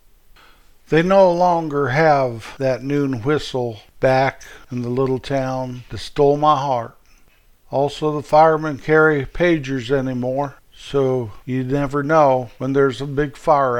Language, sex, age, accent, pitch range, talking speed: English, male, 50-69, American, 125-150 Hz, 135 wpm